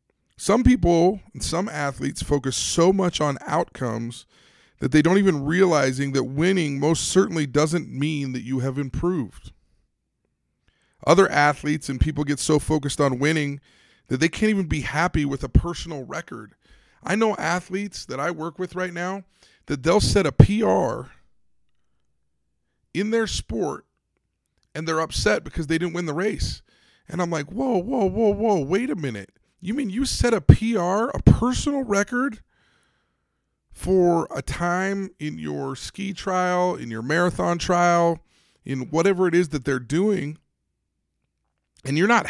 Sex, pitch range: male, 135-180 Hz